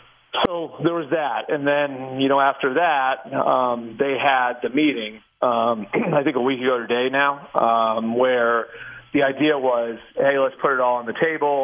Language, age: English, 40-59